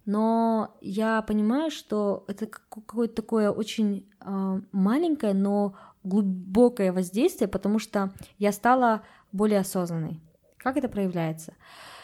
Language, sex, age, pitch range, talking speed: Russian, female, 20-39, 190-230 Hz, 105 wpm